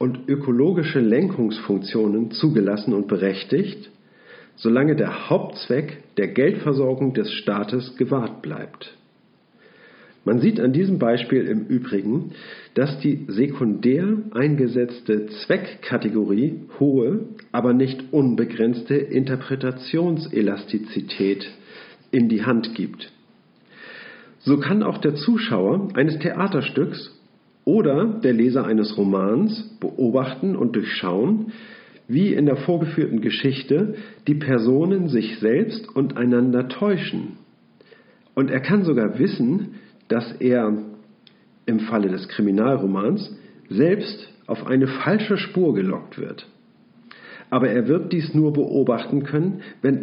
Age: 50-69